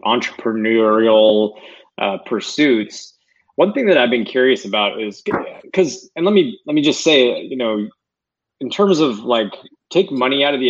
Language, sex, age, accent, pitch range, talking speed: English, male, 20-39, American, 105-135 Hz, 170 wpm